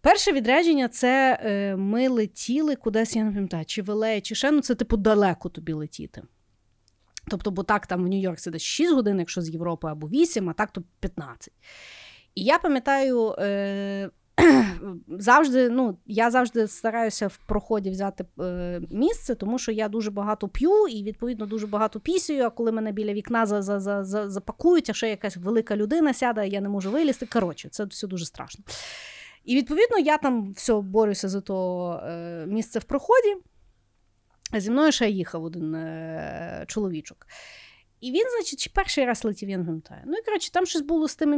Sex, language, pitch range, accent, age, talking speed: female, Ukrainian, 195-260 Hz, native, 30-49, 170 wpm